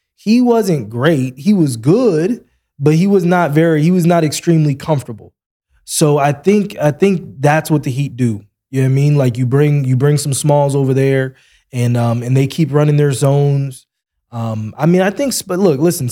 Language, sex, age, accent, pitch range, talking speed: English, male, 20-39, American, 125-160 Hz, 210 wpm